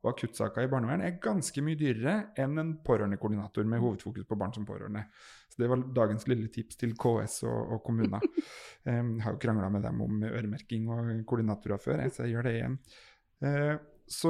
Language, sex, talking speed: English, male, 185 wpm